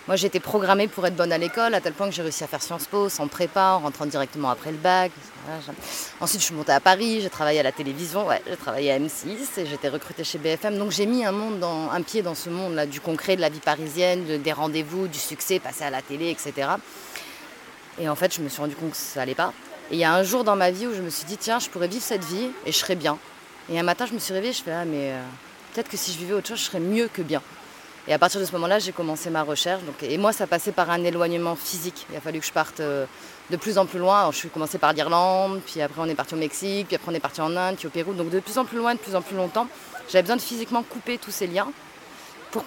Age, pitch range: 20-39, 155-195 Hz